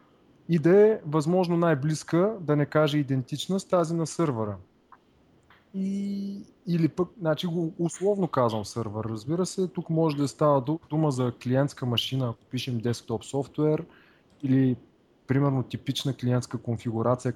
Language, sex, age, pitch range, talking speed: Bulgarian, male, 20-39, 125-160 Hz, 140 wpm